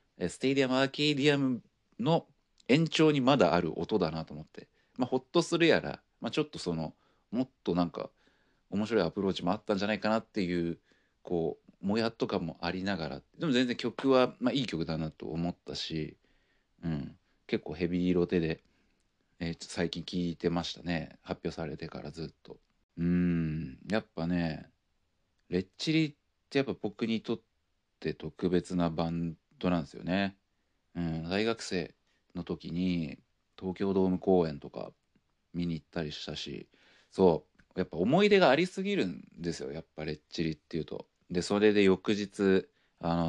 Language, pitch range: Japanese, 85-115 Hz